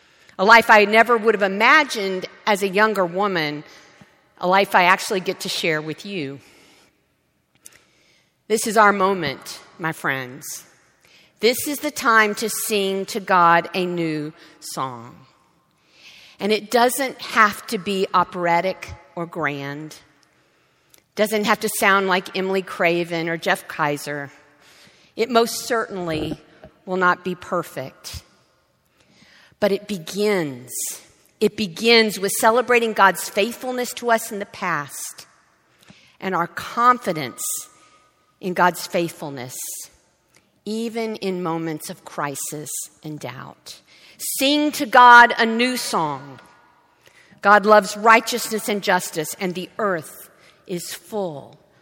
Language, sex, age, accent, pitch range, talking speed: English, female, 50-69, American, 170-225 Hz, 125 wpm